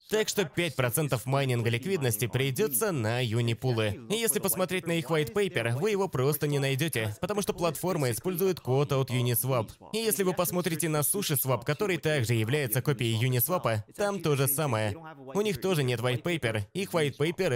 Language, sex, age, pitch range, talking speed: Russian, male, 20-39, 125-180 Hz, 175 wpm